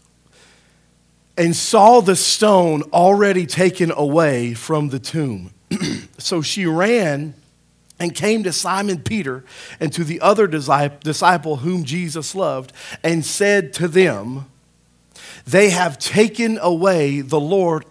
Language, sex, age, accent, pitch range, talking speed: English, male, 40-59, American, 140-195 Hz, 120 wpm